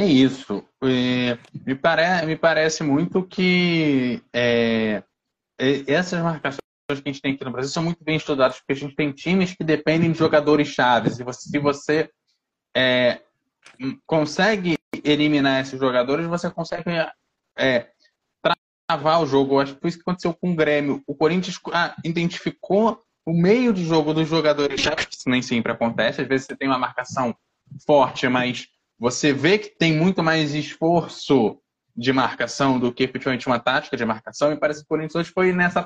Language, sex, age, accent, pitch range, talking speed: Portuguese, male, 20-39, Brazilian, 140-175 Hz, 165 wpm